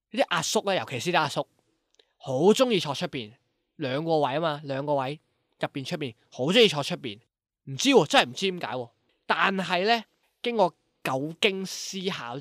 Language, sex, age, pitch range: Chinese, male, 20-39, 125-180 Hz